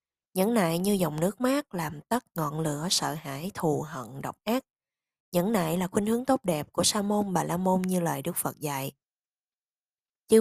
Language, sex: Vietnamese, female